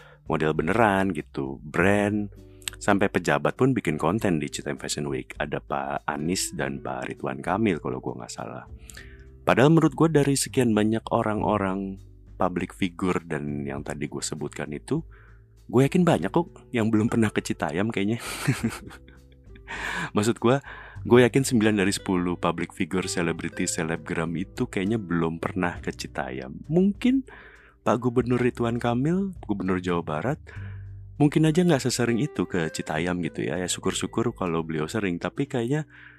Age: 30-49